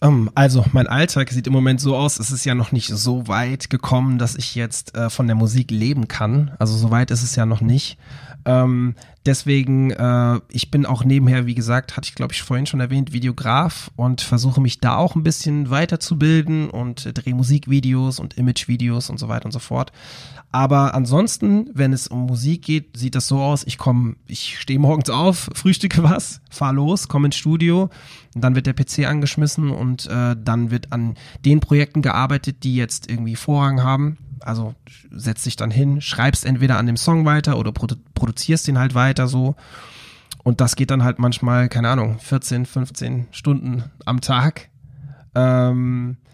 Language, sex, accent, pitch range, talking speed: German, male, German, 120-140 Hz, 185 wpm